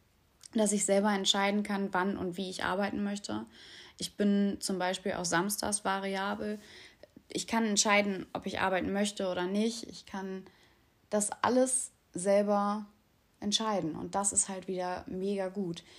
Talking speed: 150 wpm